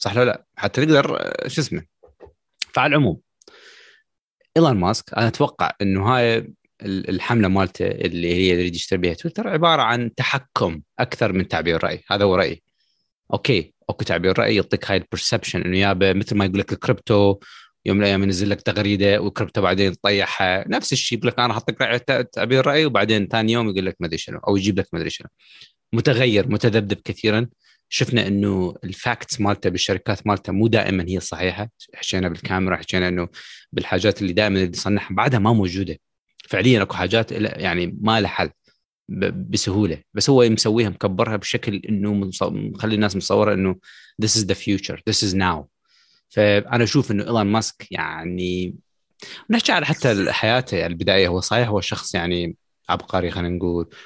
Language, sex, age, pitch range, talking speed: Arabic, male, 30-49, 95-115 Hz, 165 wpm